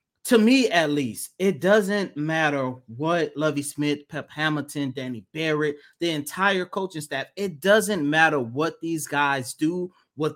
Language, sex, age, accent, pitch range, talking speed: English, male, 20-39, American, 150-220 Hz, 150 wpm